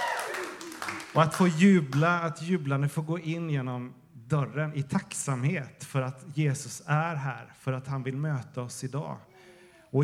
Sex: male